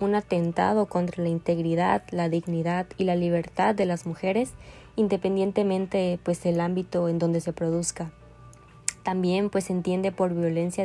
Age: 20-39